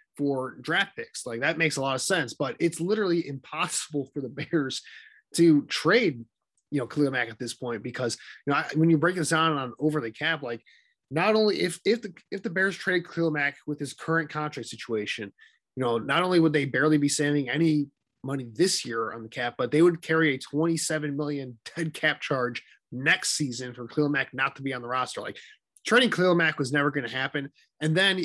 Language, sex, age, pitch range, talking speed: English, male, 20-39, 135-160 Hz, 220 wpm